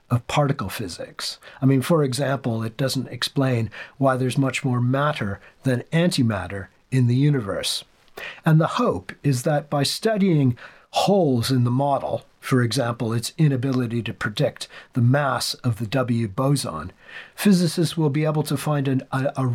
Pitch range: 125-145 Hz